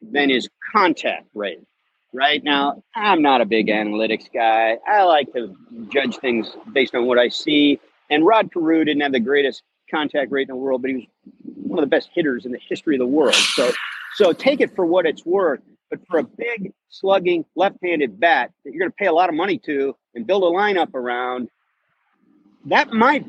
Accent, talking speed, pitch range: American, 205 wpm, 150-250 Hz